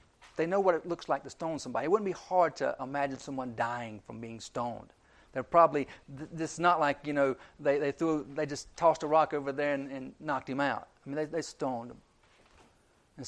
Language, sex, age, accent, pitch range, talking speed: English, male, 50-69, American, 130-160 Hz, 220 wpm